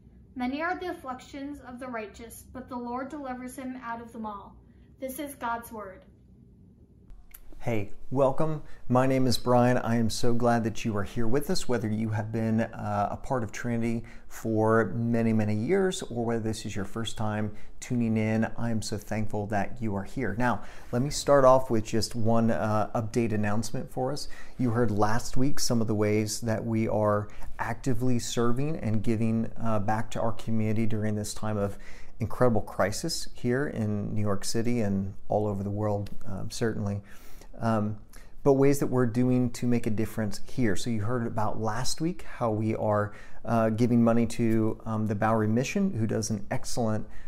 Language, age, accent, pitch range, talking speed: English, 30-49, American, 110-125 Hz, 190 wpm